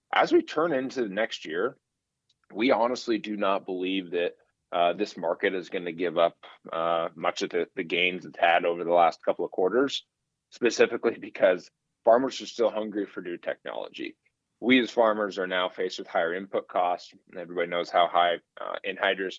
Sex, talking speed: male, 190 wpm